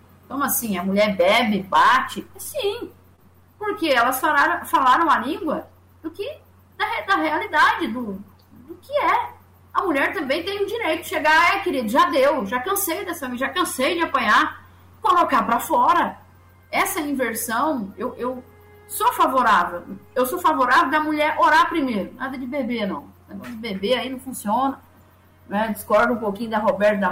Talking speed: 170 wpm